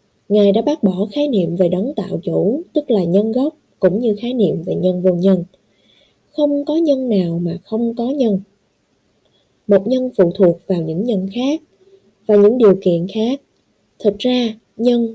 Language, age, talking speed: Vietnamese, 20-39, 180 wpm